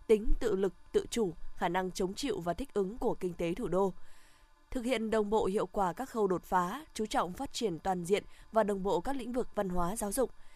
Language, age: Vietnamese, 20-39